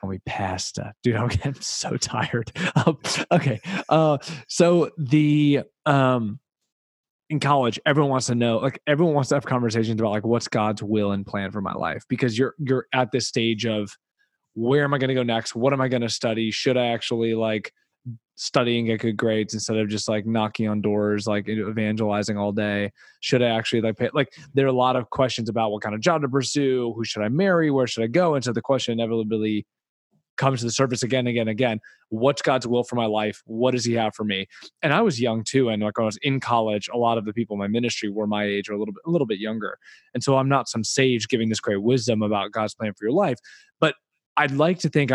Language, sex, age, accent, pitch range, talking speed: English, male, 20-39, American, 110-135 Hz, 235 wpm